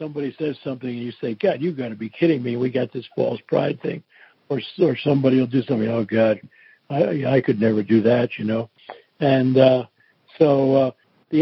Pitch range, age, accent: 125-155 Hz, 60-79, American